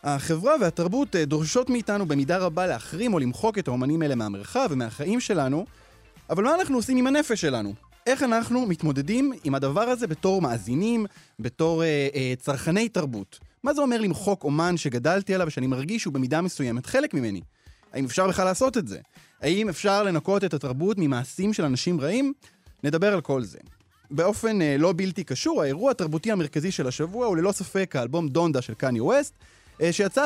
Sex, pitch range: male, 140-215 Hz